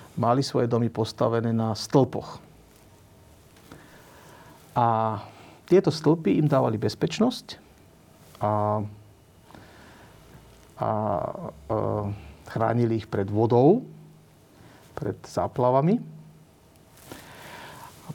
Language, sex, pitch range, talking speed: Slovak, male, 115-155 Hz, 75 wpm